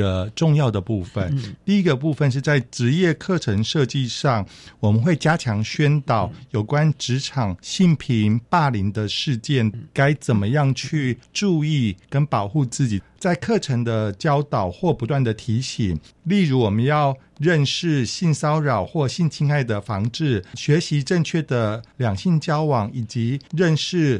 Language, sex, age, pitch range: Chinese, male, 50-69, 110-155 Hz